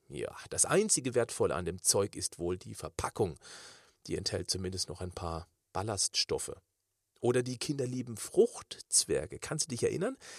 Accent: German